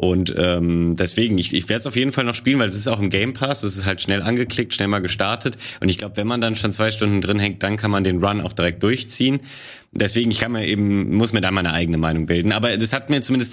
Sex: male